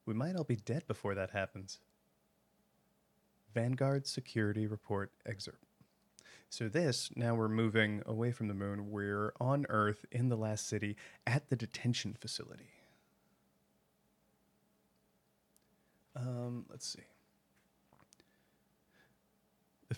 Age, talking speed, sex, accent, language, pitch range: 30-49, 110 wpm, male, American, English, 105-135 Hz